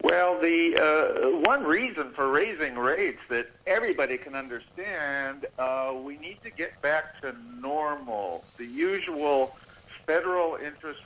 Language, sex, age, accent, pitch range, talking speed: English, male, 50-69, American, 130-170 Hz, 130 wpm